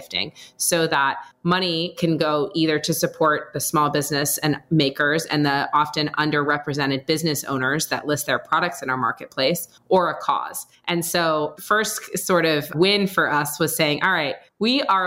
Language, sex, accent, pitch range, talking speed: English, female, American, 155-185 Hz, 170 wpm